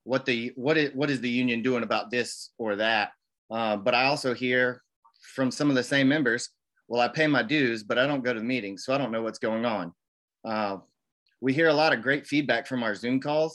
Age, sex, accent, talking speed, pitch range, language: 30-49, male, American, 245 wpm, 110-135 Hz, English